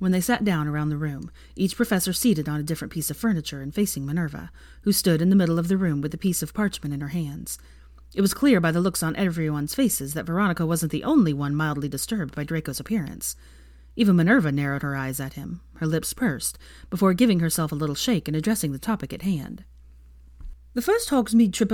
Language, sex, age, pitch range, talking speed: English, female, 30-49, 140-215 Hz, 225 wpm